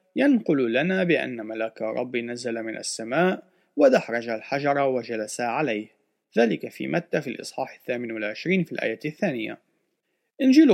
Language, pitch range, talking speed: Arabic, 125-195 Hz, 130 wpm